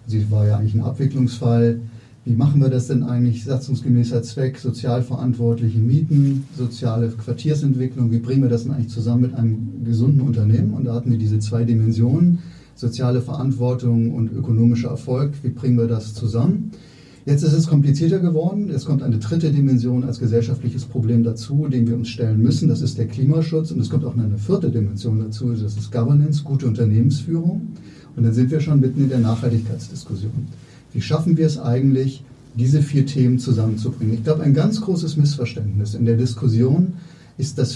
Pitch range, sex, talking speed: 115-145 Hz, male, 175 wpm